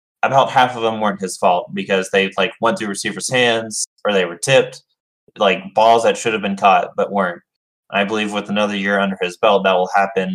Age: 20-39